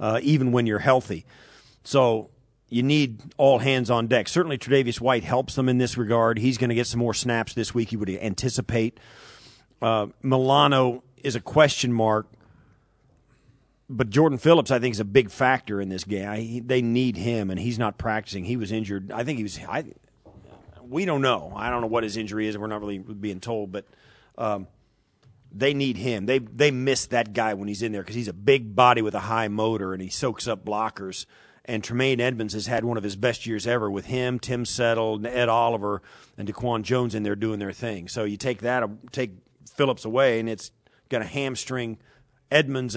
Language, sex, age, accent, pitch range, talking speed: English, male, 40-59, American, 110-130 Hz, 205 wpm